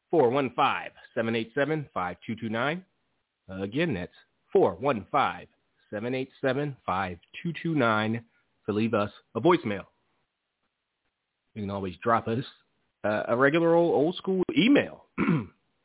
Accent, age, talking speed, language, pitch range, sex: American, 30-49, 75 wpm, English, 105-145 Hz, male